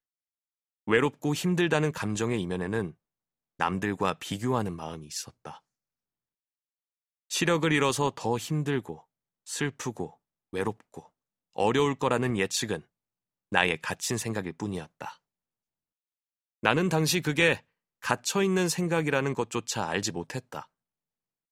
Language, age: Korean, 30-49